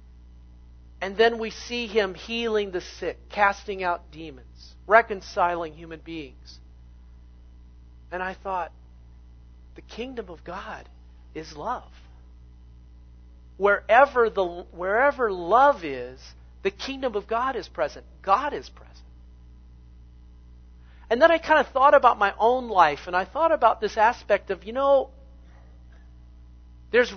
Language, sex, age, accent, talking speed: English, male, 50-69, American, 125 wpm